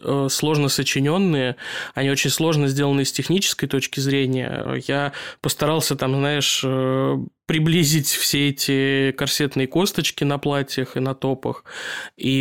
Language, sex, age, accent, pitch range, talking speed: Russian, male, 20-39, native, 135-150 Hz, 120 wpm